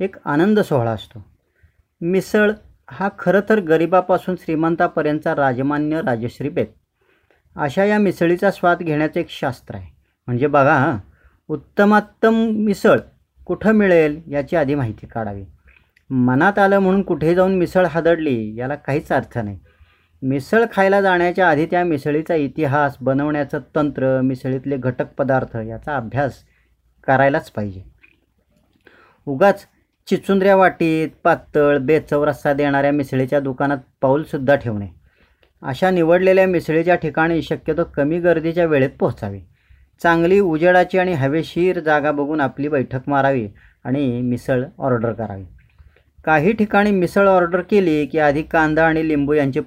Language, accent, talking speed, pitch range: Marathi, native, 120 wpm, 130-175 Hz